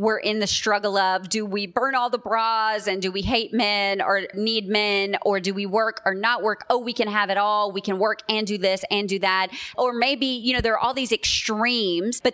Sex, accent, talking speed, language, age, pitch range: female, American, 250 wpm, English, 30-49, 195-240 Hz